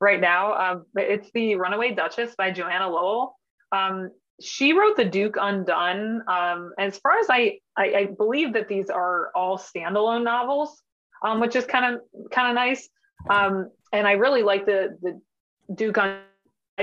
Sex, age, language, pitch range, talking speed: female, 20-39, English, 185-225 Hz, 170 wpm